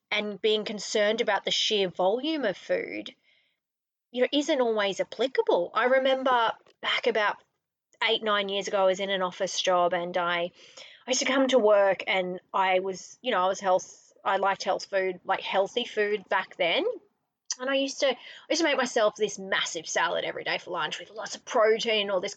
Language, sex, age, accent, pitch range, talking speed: English, female, 20-39, Australian, 195-270 Hz, 205 wpm